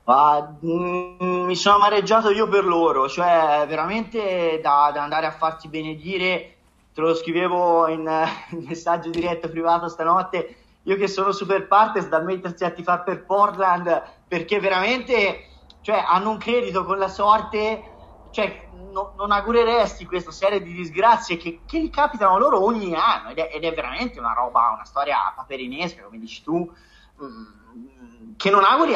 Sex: male